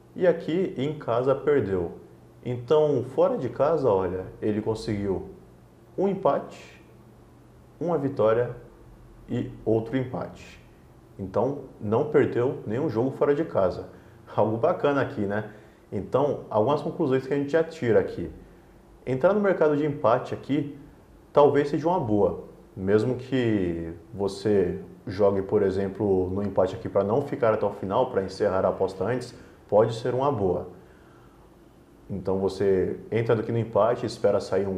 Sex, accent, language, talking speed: male, Brazilian, Portuguese, 145 wpm